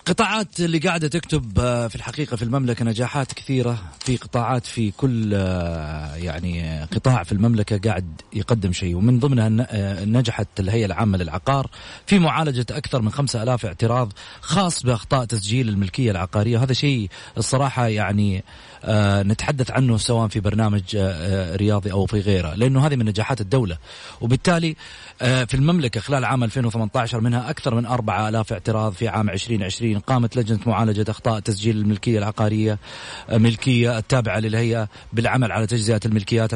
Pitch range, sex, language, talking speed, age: 105-125 Hz, male, Arabic, 140 wpm, 30-49